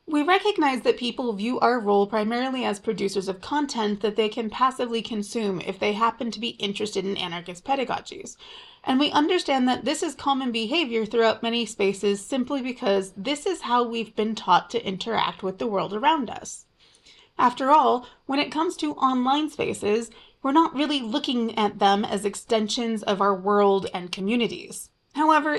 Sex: female